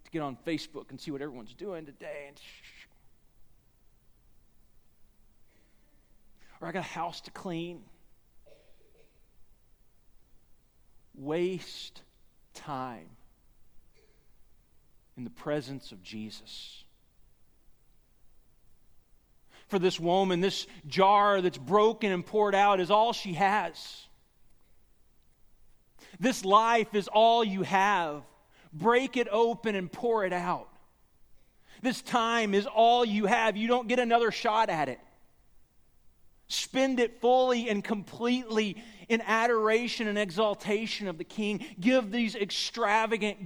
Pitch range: 180-235 Hz